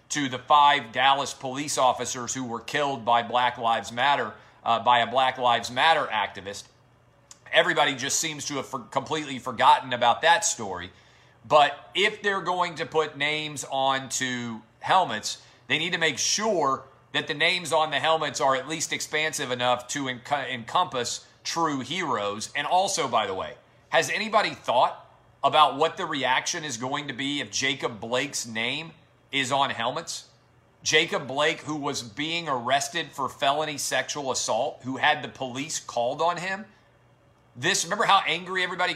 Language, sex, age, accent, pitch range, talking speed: English, male, 40-59, American, 125-160 Hz, 160 wpm